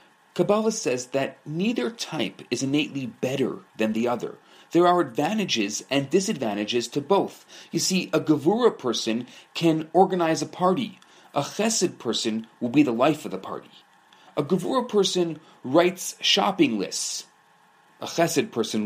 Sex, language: male, English